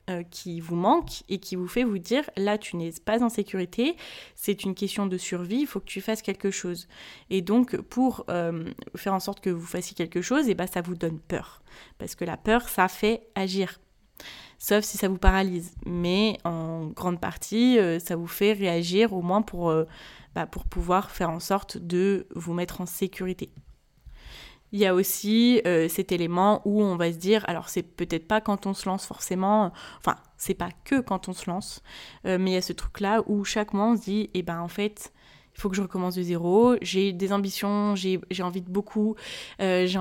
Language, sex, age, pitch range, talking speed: French, female, 20-39, 180-210 Hz, 215 wpm